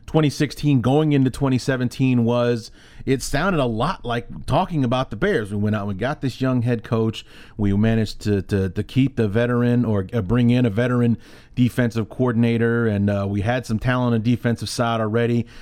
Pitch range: 105-125 Hz